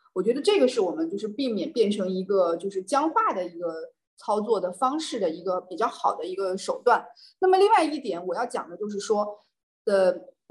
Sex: female